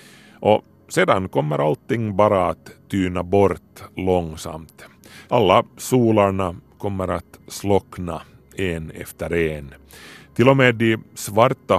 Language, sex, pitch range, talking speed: Swedish, male, 85-110 Hz, 110 wpm